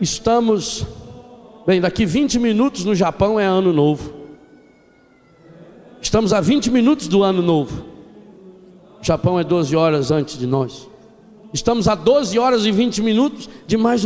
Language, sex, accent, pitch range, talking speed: Portuguese, male, Brazilian, 170-250 Hz, 145 wpm